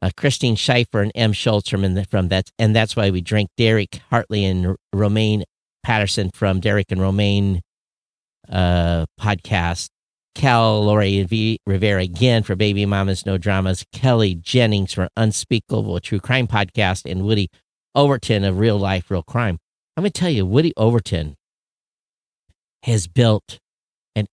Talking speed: 145 wpm